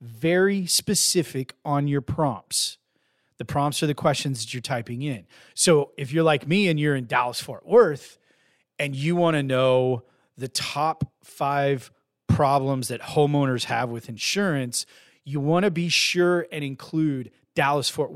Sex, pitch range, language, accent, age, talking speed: male, 130-175 Hz, English, American, 30-49, 150 wpm